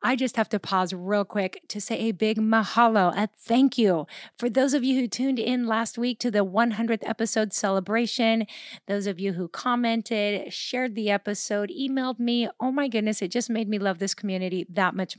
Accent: American